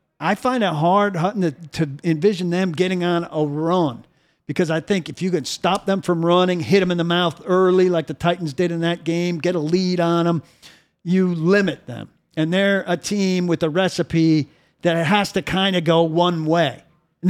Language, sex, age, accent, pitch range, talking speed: English, male, 50-69, American, 165-200 Hz, 200 wpm